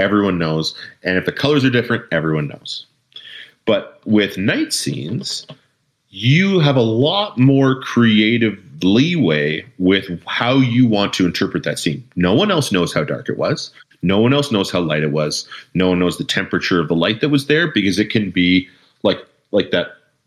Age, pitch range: 30-49, 90-120 Hz